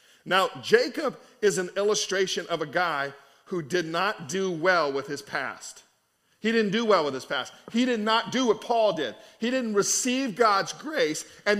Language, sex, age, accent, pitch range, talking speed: English, male, 40-59, American, 175-225 Hz, 185 wpm